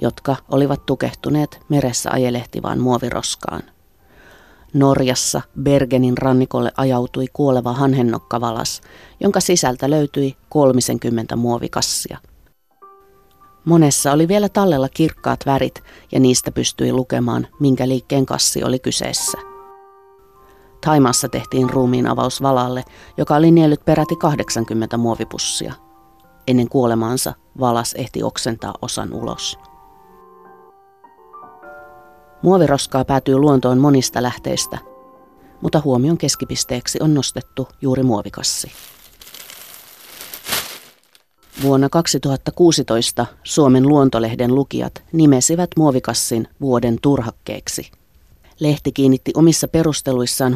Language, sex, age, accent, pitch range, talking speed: Finnish, female, 30-49, native, 120-145 Hz, 90 wpm